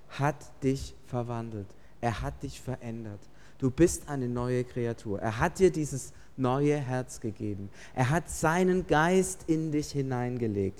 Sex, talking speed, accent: male, 145 wpm, German